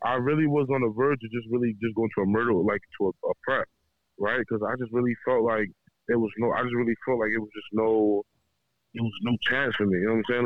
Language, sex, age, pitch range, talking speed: English, male, 20-39, 110-135 Hz, 280 wpm